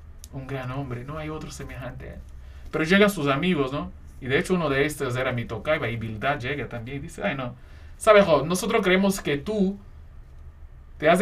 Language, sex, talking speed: Spanish, male, 200 wpm